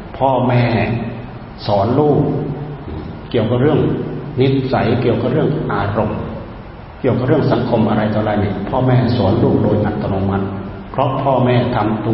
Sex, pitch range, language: male, 105-125 Hz, Thai